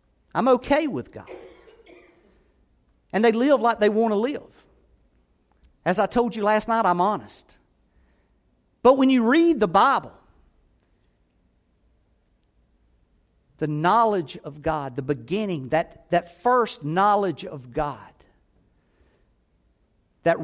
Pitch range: 165-255 Hz